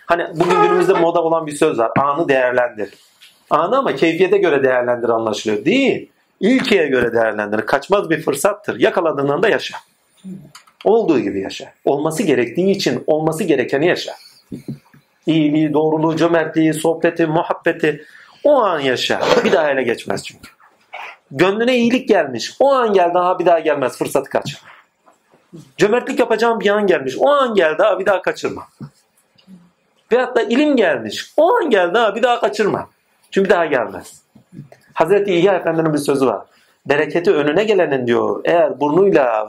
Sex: male